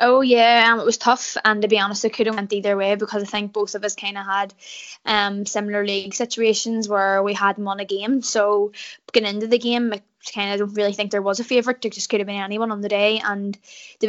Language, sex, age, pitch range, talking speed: English, female, 10-29, 200-215 Hz, 260 wpm